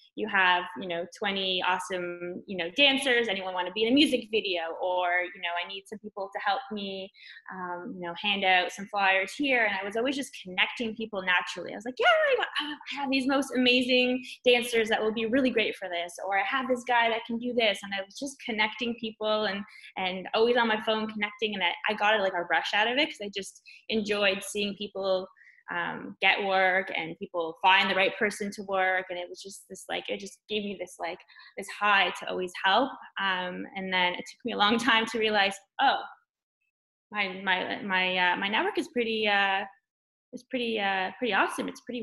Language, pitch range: English, 185-235 Hz